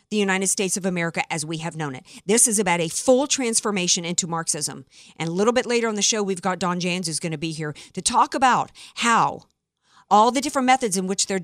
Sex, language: female, English